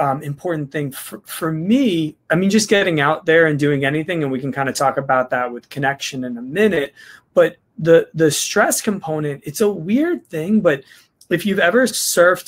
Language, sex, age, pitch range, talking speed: English, male, 20-39, 145-190 Hz, 200 wpm